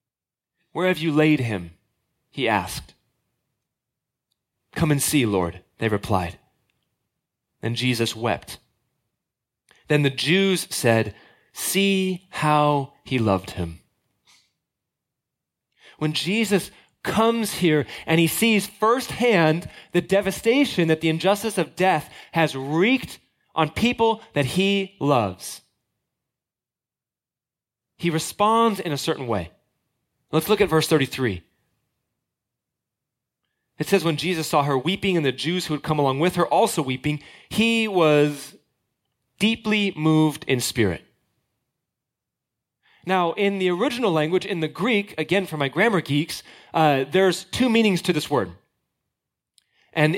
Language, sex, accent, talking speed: English, male, American, 125 wpm